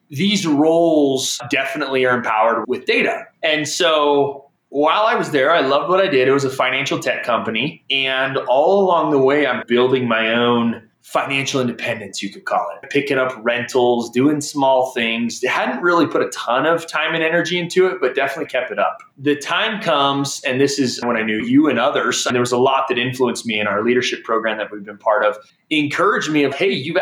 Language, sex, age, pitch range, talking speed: English, male, 20-39, 125-155 Hz, 210 wpm